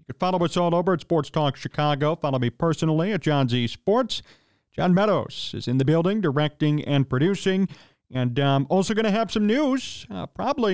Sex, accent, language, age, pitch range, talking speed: male, American, English, 40-59, 125-185 Hz, 190 wpm